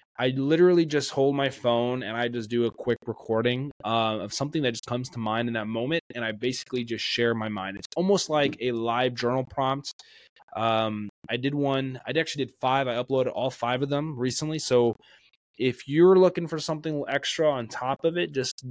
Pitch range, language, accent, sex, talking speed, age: 115-135 Hz, English, American, male, 210 wpm, 20-39